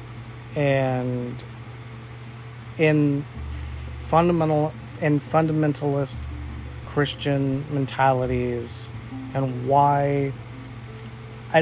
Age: 30-49